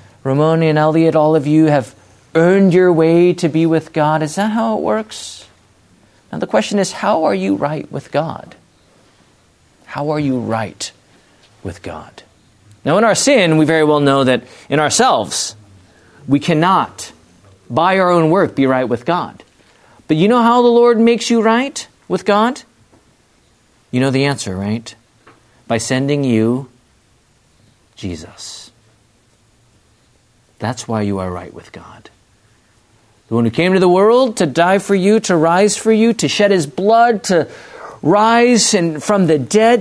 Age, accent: 40-59, American